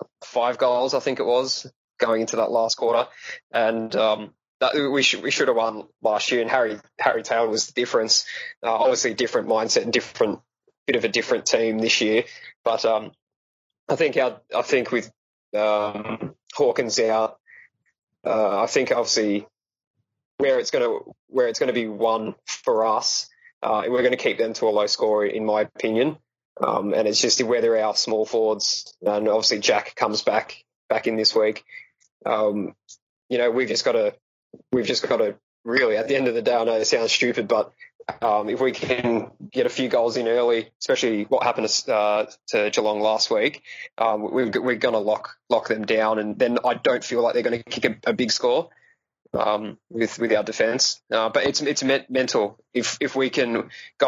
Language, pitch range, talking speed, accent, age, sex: English, 110-140 Hz, 200 wpm, Australian, 20-39, male